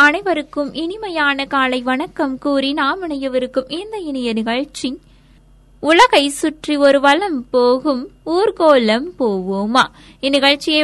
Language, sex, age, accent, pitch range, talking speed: Tamil, female, 20-39, native, 245-300 Hz, 100 wpm